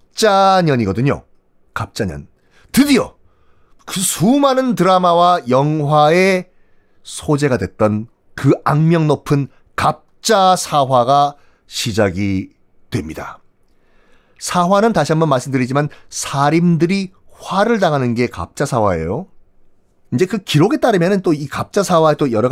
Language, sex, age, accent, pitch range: Korean, male, 40-59, native, 120-180 Hz